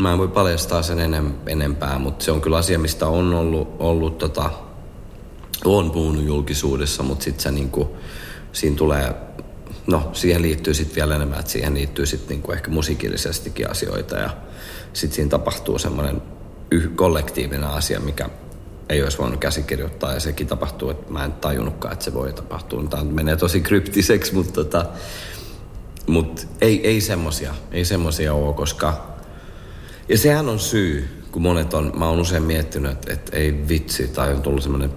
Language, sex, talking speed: Finnish, male, 165 wpm